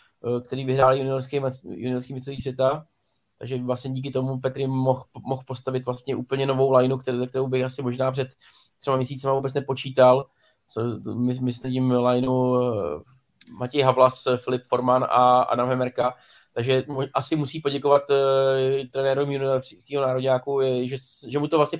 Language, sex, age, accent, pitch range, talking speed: Czech, male, 20-39, native, 130-140 Hz, 130 wpm